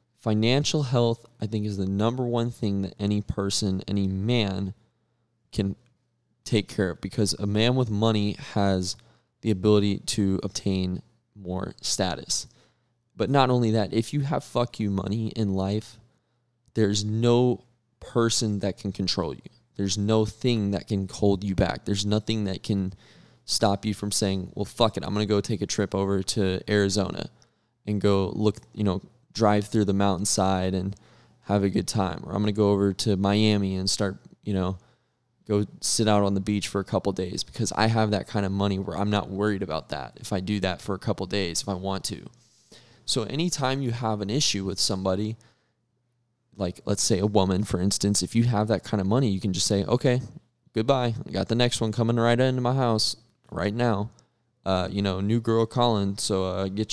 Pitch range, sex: 100-115 Hz, male